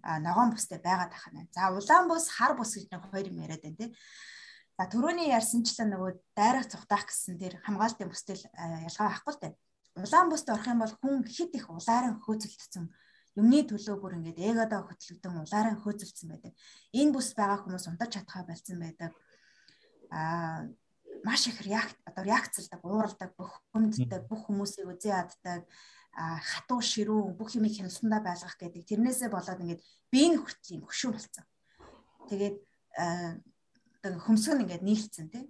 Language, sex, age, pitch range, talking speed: Russian, female, 20-39, 180-240 Hz, 105 wpm